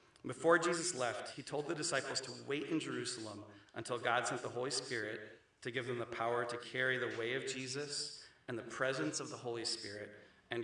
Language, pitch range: English, 115-135 Hz